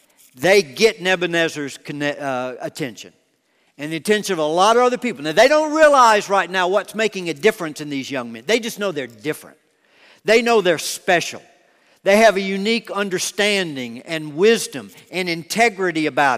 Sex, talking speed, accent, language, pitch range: male, 170 wpm, American, English, 155-200 Hz